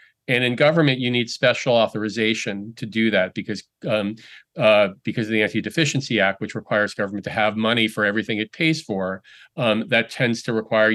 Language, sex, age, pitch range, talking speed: English, male, 40-59, 110-135 Hz, 185 wpm